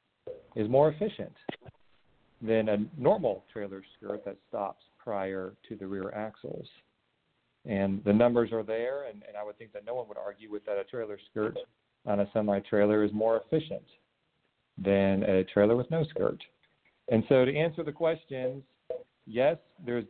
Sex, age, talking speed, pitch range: male, 50-69, 165 wpm, 105-130 Hz